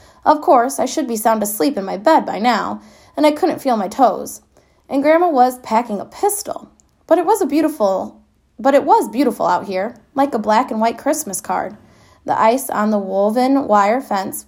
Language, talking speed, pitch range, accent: English, 205 wpm, 200-270 Hz, American